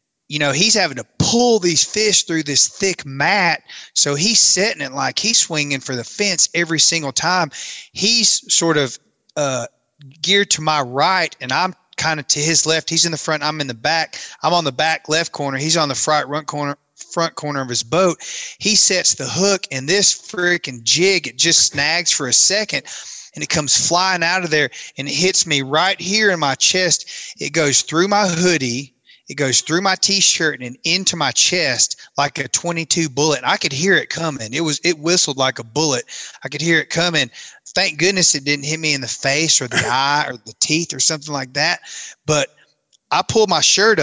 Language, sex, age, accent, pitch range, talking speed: English, male, 30-49, American, 140-180 Hz, 205 wpm